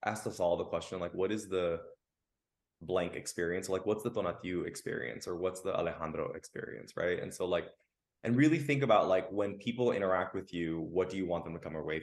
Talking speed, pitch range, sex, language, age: 215 wpm, 85-120 Hz, male, English, 20-39